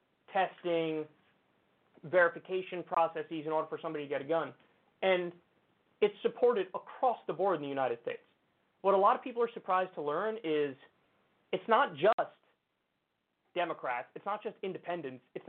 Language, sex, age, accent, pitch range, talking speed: English, male, 30-49, American, 165-240 Hz, 155 wpm